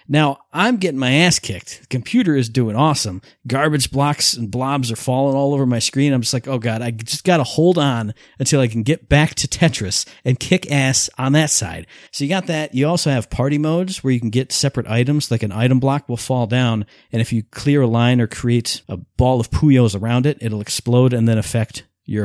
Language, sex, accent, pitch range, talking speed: English, male, American, 115-145 Hz, 235 wpm